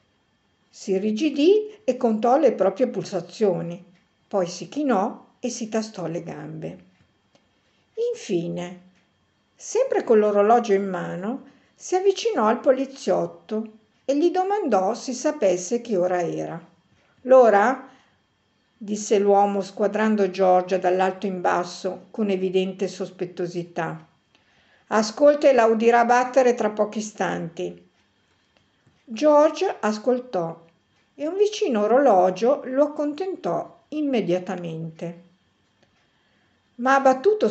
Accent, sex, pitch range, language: native, female, 175-245 Hz, Italian